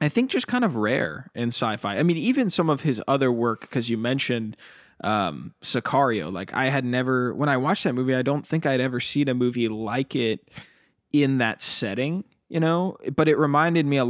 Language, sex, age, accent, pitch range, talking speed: English, male, 20-39, American, 115-140 Hz, 215 wpm